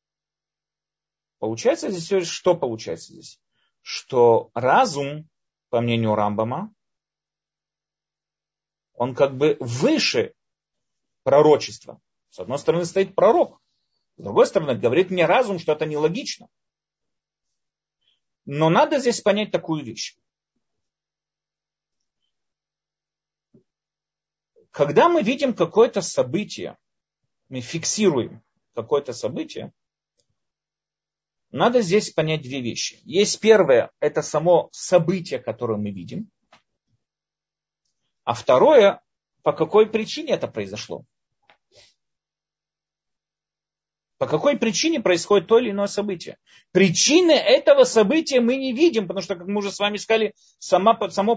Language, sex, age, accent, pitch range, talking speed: Russian, male, 40-59, native, 155-230 Hz, 100 wpm